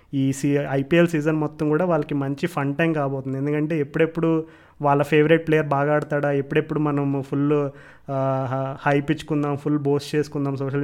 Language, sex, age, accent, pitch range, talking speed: Telugu, male, 20-39, native, 140-160 Hz, 150 wpm